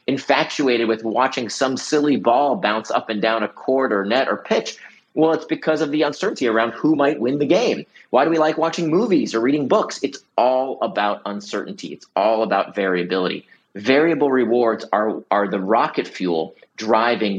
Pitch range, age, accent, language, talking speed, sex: 110-150 Hz, 30-49, American, English, 185 wpm, male